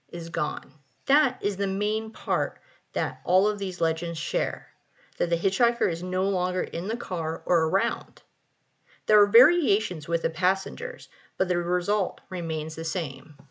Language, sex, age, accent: English, female, 30-49, American